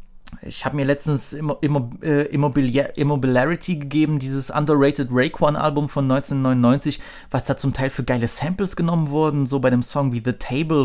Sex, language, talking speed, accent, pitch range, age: male, German, 155 wpm, German, 130-155 Hz, 20-39